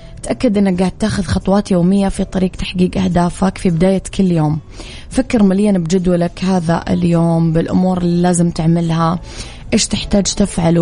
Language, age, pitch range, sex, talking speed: English, 20-39, 165-210 Hz, female, 145 wpm